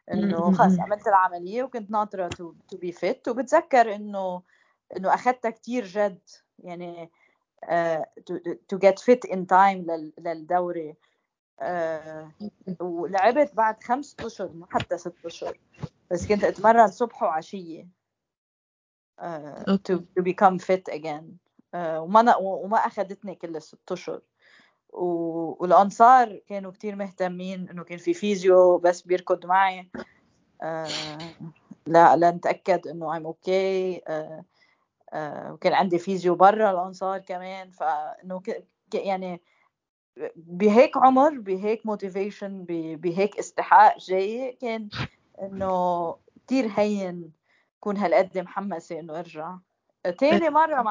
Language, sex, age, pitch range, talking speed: Arabic, female, 20-39, 175-210 Hz, 110 wpm